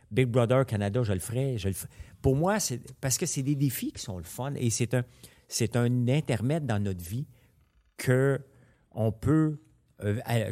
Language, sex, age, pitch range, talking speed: French, male, 50-69, 105-135 Hz, 190 wpm